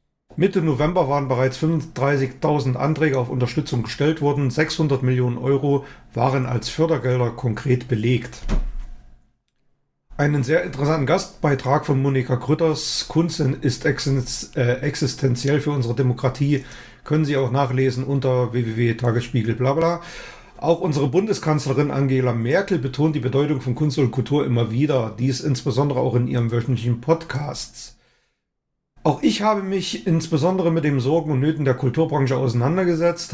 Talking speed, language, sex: 130 wpm, German, male